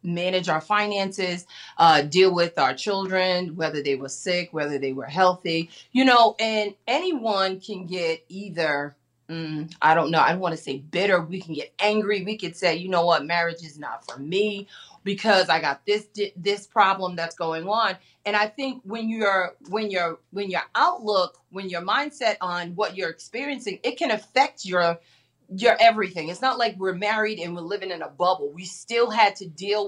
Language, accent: English, American